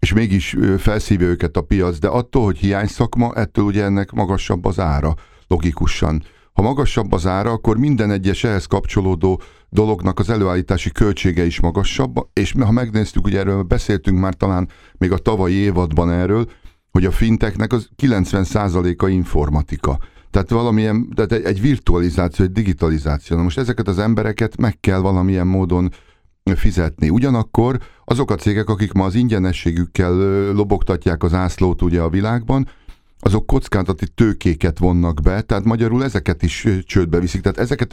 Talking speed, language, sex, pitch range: 150 wpm, Hungarian, male, 90-110 Hz